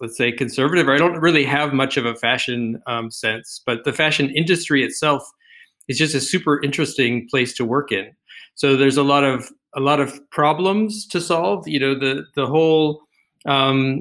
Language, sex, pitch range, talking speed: Finnish, male, 125-145 Hz, 190 wpm